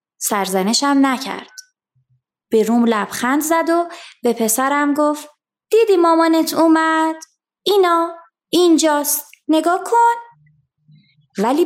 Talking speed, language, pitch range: 95 wpm, Persian, 210-315 Hz